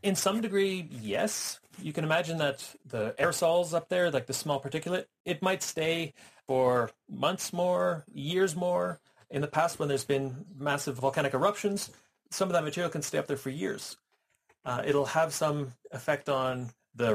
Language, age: English, 30-49